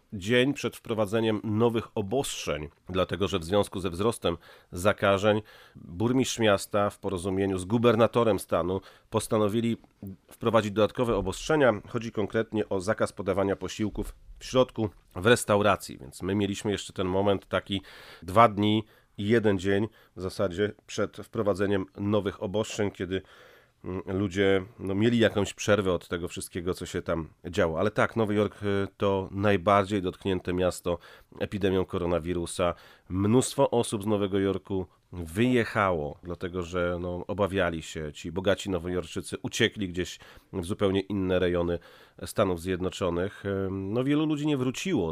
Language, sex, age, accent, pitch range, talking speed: Polish, male, 40-59, native, 90-110 Hz, 135 wpm